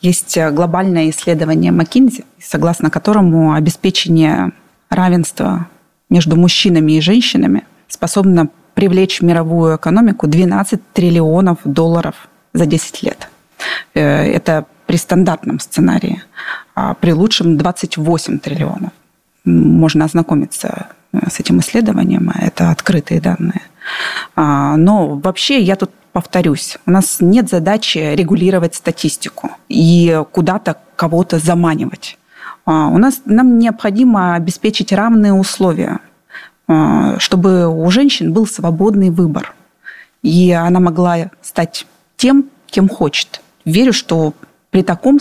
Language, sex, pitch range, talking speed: Russian, female, 165-200 Hz, 100 wpm